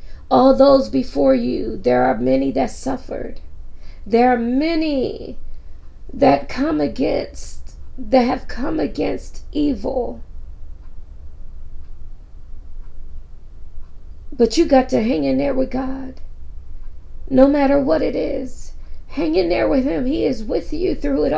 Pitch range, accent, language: 240-345 Hz, American, English